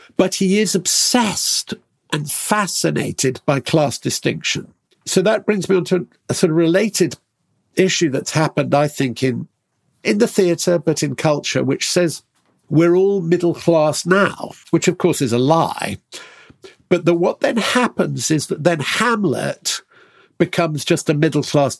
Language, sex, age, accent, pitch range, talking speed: English, male, 50-69, British, 145-185 Hz, 160 wpm